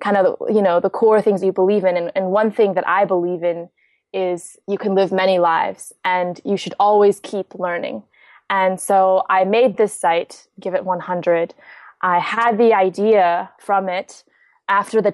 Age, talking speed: 20-39, 185 wpm